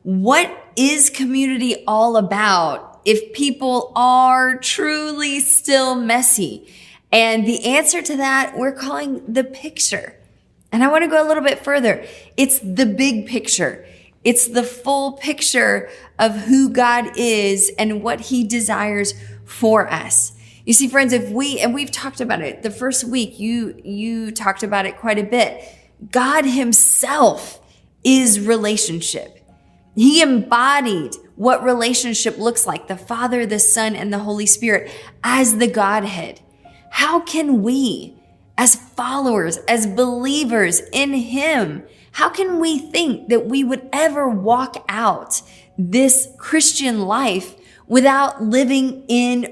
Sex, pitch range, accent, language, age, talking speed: female, 220-275 Hz, American, English, 20-39, 140 wpm